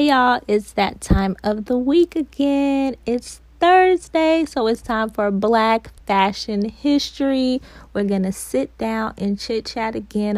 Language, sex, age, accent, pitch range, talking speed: English, female, 20-39, American, 195-240 Hz, 145 wpm